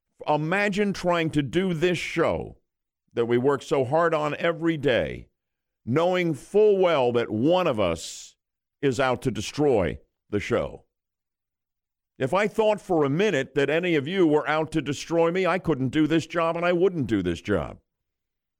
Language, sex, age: English, male, 50-69